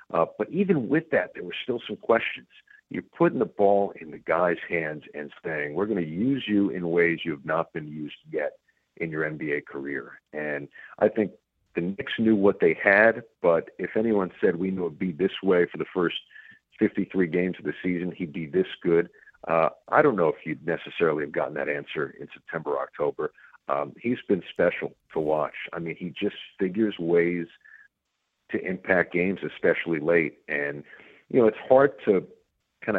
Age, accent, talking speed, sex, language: 50-69, American, 195 wpm, male, English